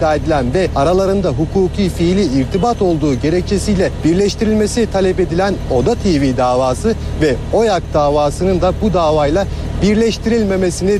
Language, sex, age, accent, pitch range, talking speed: Turkish, male, 40-59, native, 165-195 Hz, 115 wpm